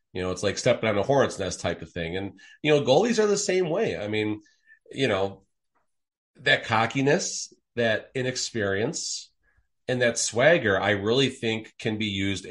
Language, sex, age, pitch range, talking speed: English, male, 30-49, 95-120 Hz, 175 wpm